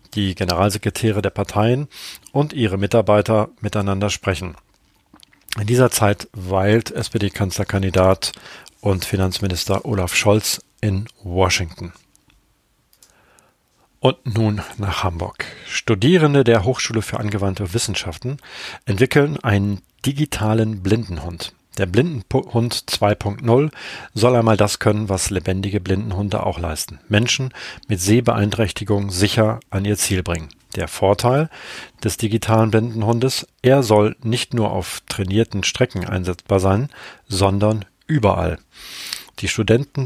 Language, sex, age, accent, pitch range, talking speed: German, male, 40-59, German, 95-115 Hz, 110 wpm